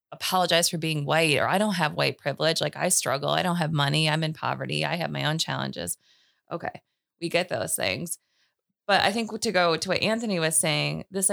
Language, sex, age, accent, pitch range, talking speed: English, female, 20-39, American, 155-185 Hz, 215 wpm